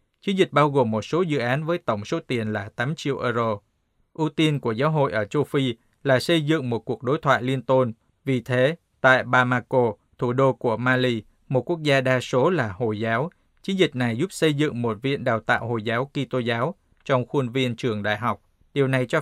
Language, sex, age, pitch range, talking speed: Vietnamese, male, 20-39, 120-145 Hz, 225 wpm